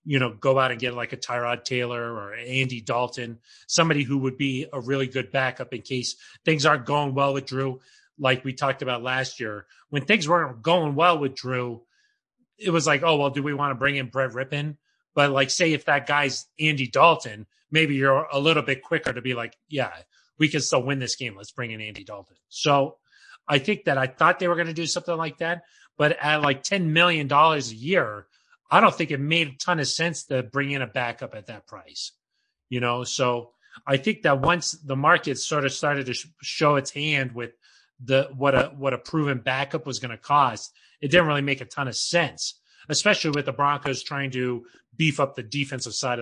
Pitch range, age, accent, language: 125-160 Hz, 30-49, American, English